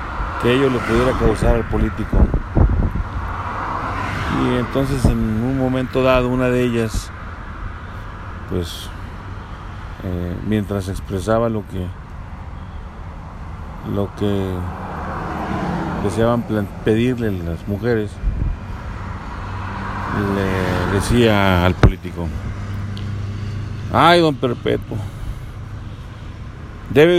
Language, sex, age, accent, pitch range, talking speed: Spanish, male, 50-69, Mexican, 90-110 Hz, 80 wpm